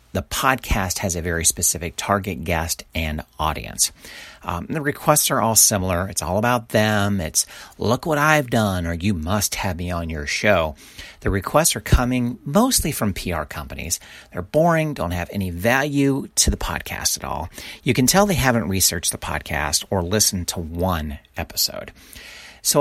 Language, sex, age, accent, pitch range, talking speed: English, male, 40-59, American, 85-120 Hz, 175 wpm